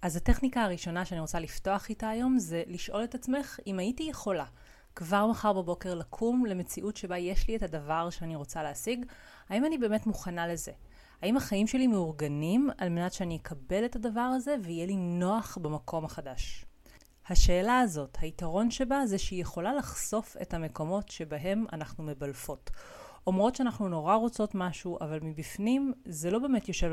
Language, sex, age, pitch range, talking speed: Hebrew, female, 30-49, 160-220 Hz, 165 wpm